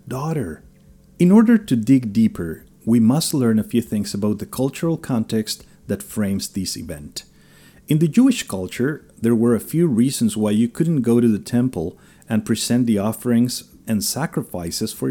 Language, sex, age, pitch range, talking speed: English, male, 40-59, 110-165 Hz, 170 wpm